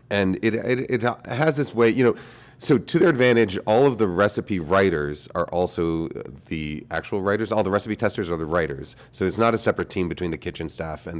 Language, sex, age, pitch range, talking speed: English, male, 30-49, 85-115 Hz, 220 wpm